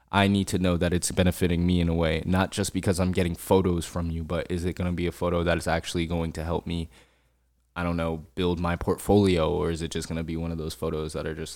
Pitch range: 80-90 Hz